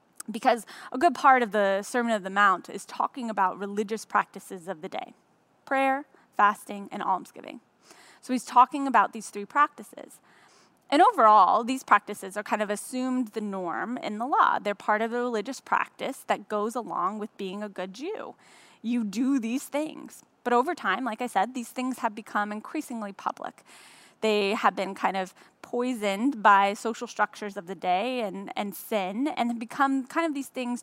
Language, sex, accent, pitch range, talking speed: English, female, American, 215-280 Hz, 180 wpm